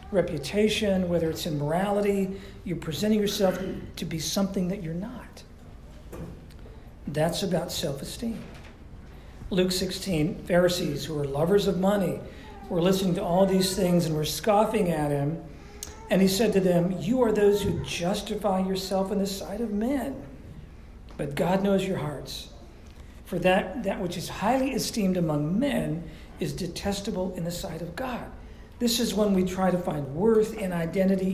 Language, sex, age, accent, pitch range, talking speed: English, male, 50-69, American, 175-210 Hz, 160 wpm